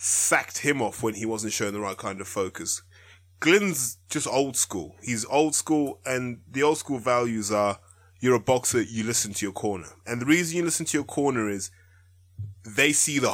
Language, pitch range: English, 95-130 Hz